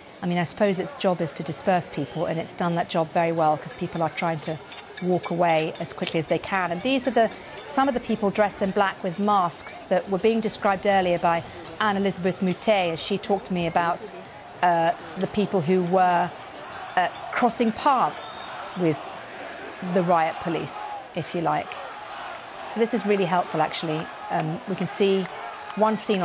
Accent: British